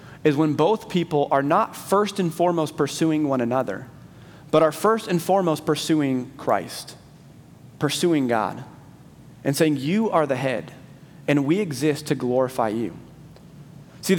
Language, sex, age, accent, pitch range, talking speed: English, male, 30-49, American, 145-180 Hz, 145 wpm